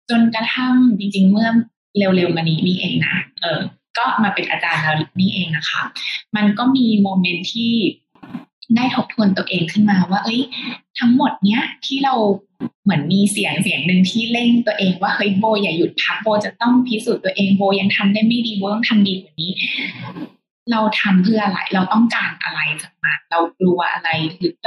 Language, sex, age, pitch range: Thai, female, 20-39, 180-230 Hz